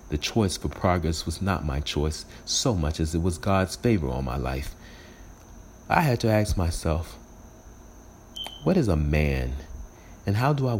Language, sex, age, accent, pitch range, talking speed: English, male, 40-59, American, 75-100 Hz, 170 wpm